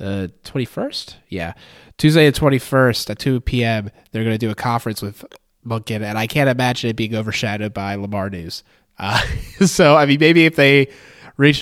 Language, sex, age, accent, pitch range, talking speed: English, male, 20-39, American, 105-125 Hz, 180 wpm